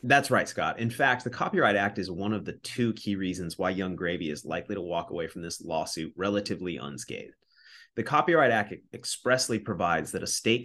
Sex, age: male, 30-49